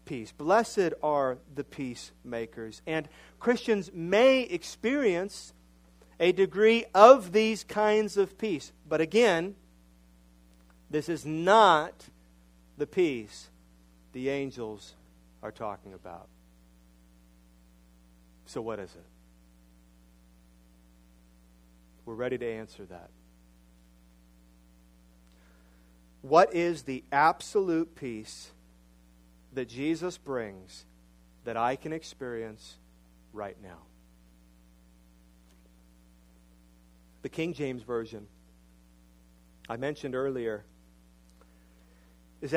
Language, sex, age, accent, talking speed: English, male, 40-59, American, 85 wpm